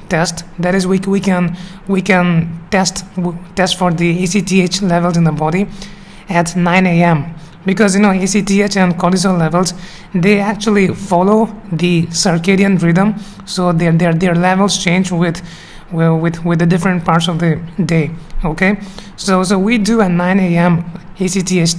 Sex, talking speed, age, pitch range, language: male, 160 wpm, 20-39, 170-195 Hz, English